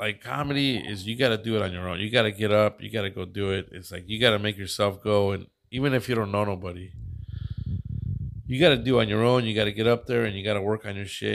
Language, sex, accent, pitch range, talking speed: English, male, American, 100-125 Hz, 270 wpm